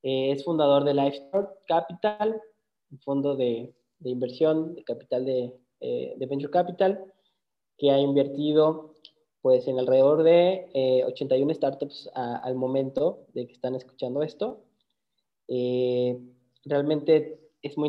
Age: 20-39